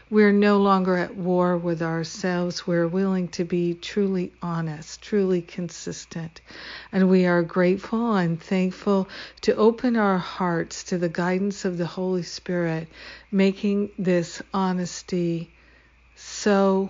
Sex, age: female, 60-79